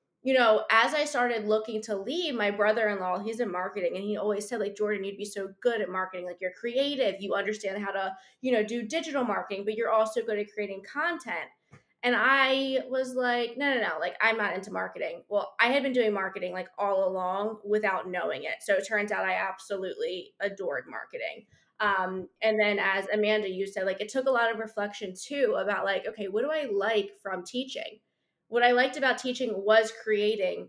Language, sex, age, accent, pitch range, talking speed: English, female, 20-39, American, 195-240 Hz, 210 wpm